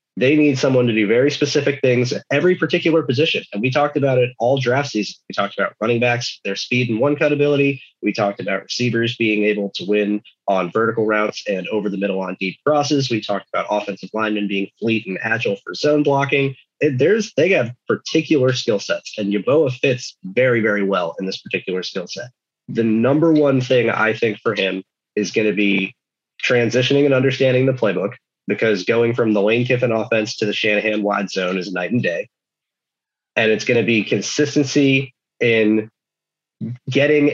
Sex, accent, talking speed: male, American, 190 wpm